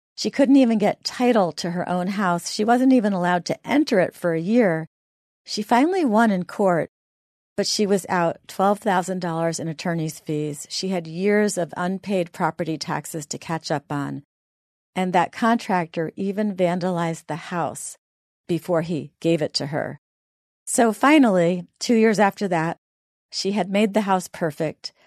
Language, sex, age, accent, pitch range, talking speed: English, female, 40-59, American, 165-220 Hz, 165 wpm